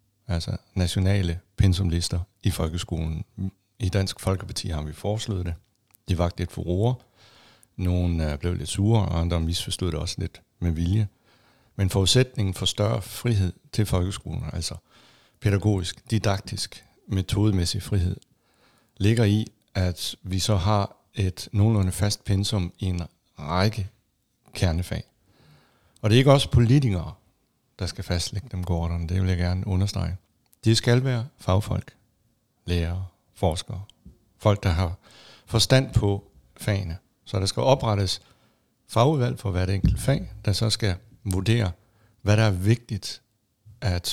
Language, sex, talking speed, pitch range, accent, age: Danish, male, 135 wpm, 90-110 Hz, native, 60-79